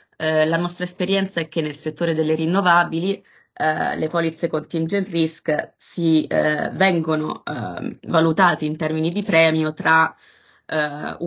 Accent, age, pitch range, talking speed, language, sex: native, 20-39, 155-170 Hz, 135 wpm, Italian, female